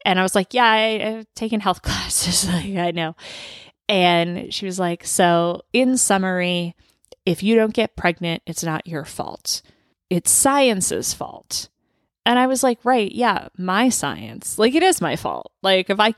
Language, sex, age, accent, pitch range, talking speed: English, female, 20-39, American, 165-225 Hz, 170 wpm